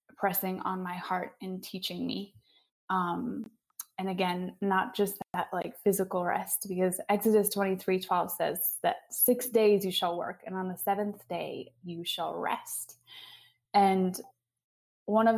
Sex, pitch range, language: female, 180-205 Hz, English